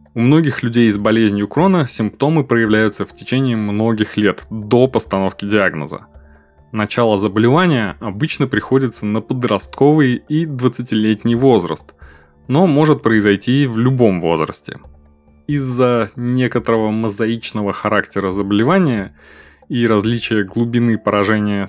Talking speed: 110 wpm